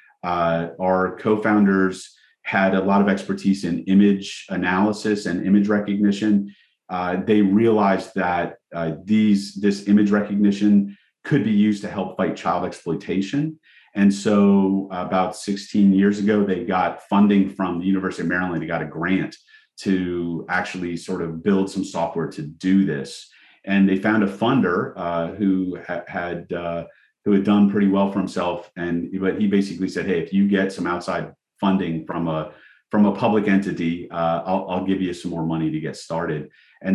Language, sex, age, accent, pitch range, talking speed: English, male, 40-59, American, 90-100 Hz, 170 wpm